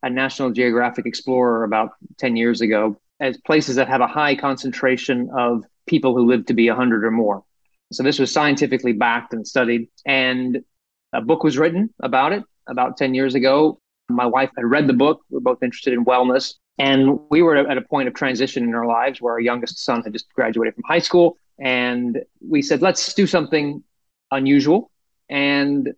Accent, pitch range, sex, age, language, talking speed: American, 125-145 Hz, male, 30-49, English, 195 wpm